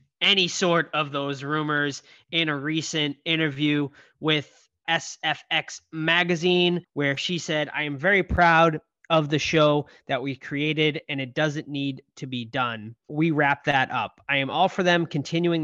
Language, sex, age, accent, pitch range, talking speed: English, male, 20-39, American, 135-170 Hz, 160 wpm